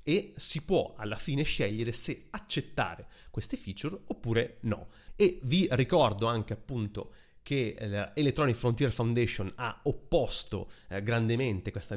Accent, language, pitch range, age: native, Italian, 110-135 Hz, 30-49